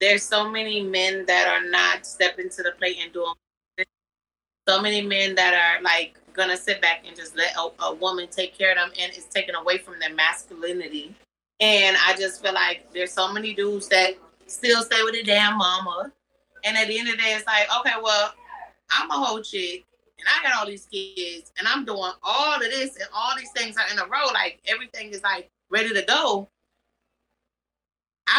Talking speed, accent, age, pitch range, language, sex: 205 wpm, American, 30-49, 190-235 Hz, English, female